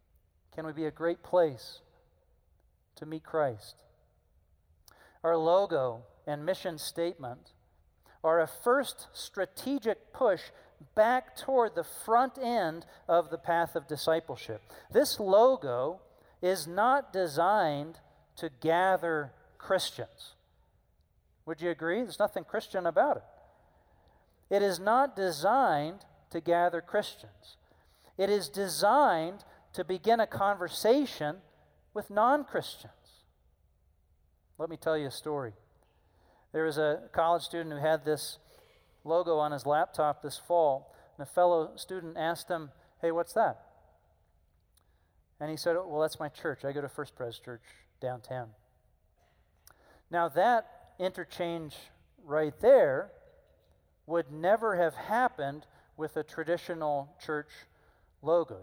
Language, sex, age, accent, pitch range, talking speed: English, male, 40-59, American, 120-180 Hz, 120 wpm